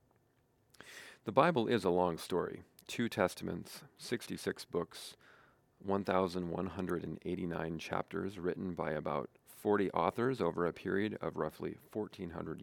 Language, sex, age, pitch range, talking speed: English, male, 40-59, 90-120 Hz, 110 wpm